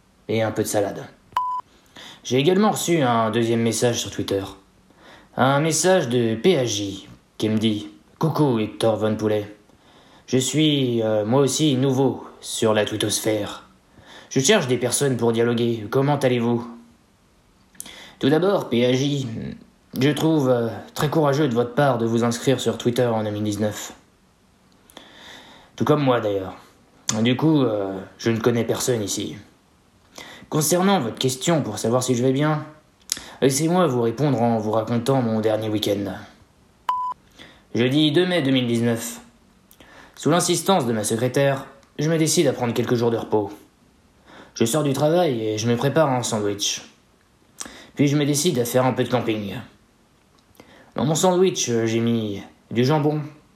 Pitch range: 110-145 Hz